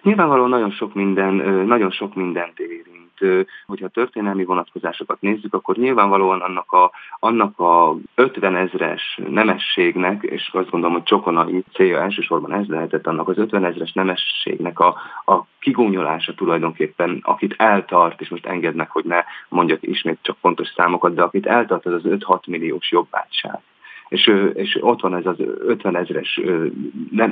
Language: Hungarian